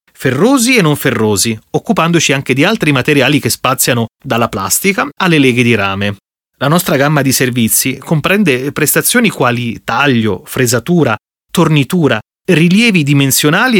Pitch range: 120-165 Hz